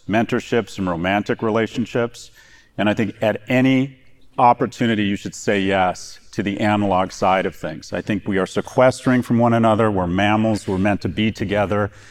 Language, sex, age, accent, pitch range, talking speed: English, male, 40-59, American, 100-115 Hz, 175 wpm